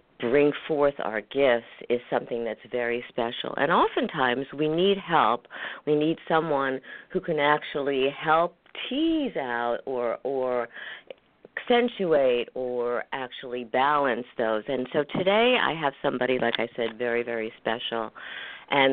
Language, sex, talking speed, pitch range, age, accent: English, female, 135 wpm, 125-160 Hz, 50-69, American